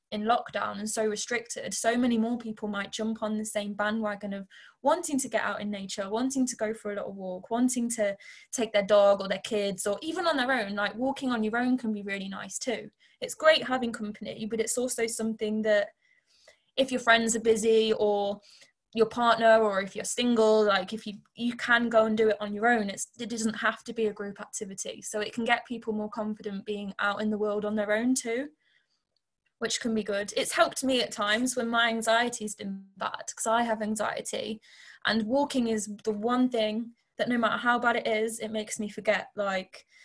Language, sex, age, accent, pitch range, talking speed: English, female, 20-39, British, 215-240 Hz, 220 wpm